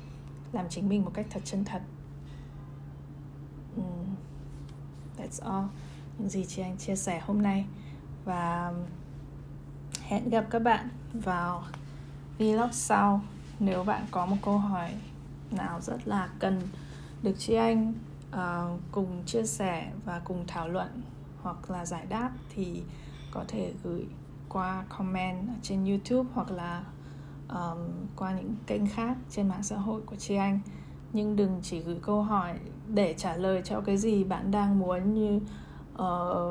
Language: Vietnamese